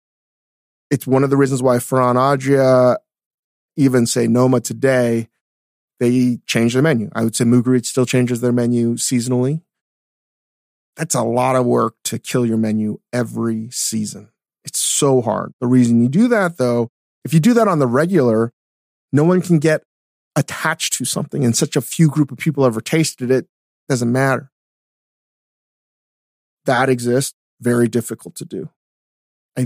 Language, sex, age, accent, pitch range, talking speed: English, male, 30-49, American, 115-140 Hz, 160 wpm